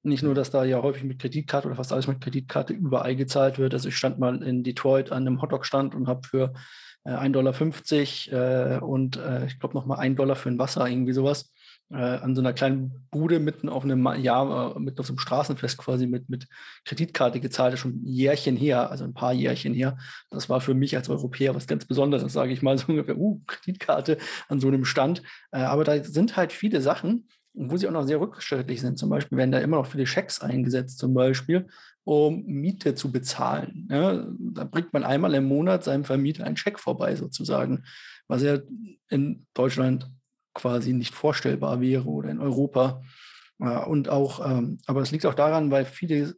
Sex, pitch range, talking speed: male, 130-145 Hz, 205 wpm